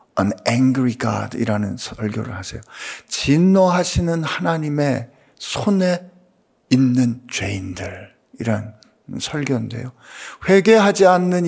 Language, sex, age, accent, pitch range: Korean, male, 50-69, native, 125-180 Hz